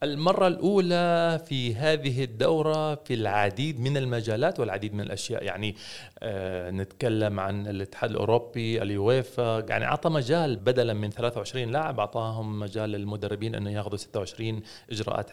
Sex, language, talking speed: male, Arabic, 130 wpm